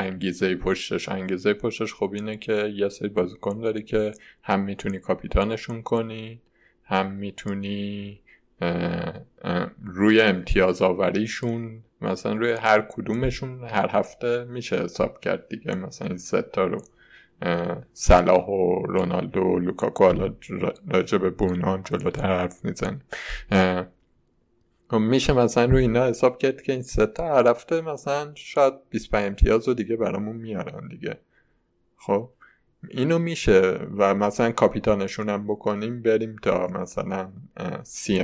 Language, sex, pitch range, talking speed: Persian, male, 95-115 Hz, 125 wpm